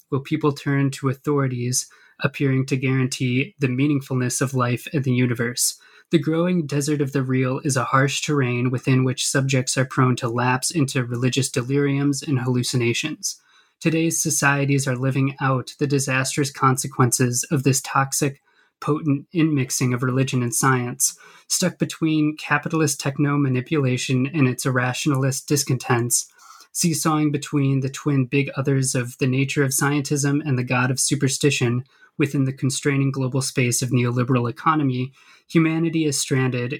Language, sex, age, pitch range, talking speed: English, male, 20-39, 130-150 Hz, 145 wpm